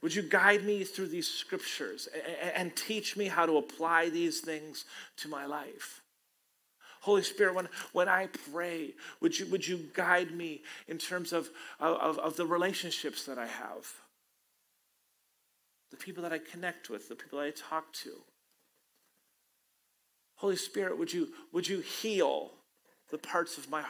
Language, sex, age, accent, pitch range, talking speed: English, male, 40-59, American, 155-210 Hz, 160 wpm